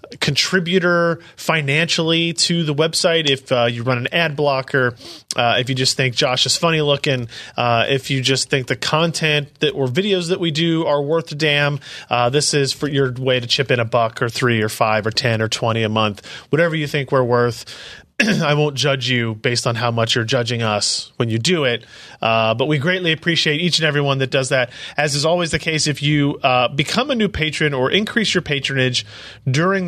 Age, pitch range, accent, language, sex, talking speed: 30-49, 130-165 Hz, American, English, male, 215 wpm